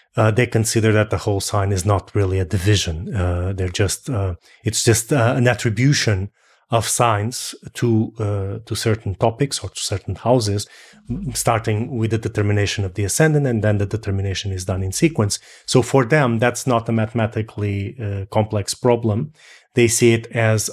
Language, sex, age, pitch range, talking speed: English, male, 30-49, 100-115 Hz, 180 wpm